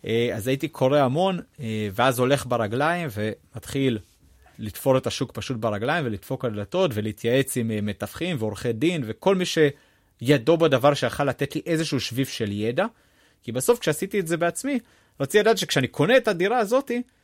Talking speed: 155 wpm